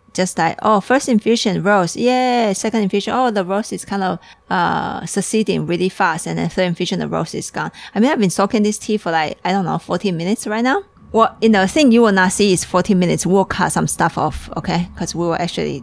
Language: English